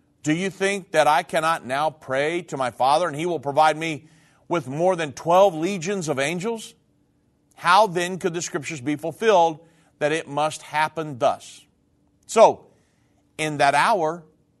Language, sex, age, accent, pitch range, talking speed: English, male, 50-69, American, 145-195 Hz, 160 wpm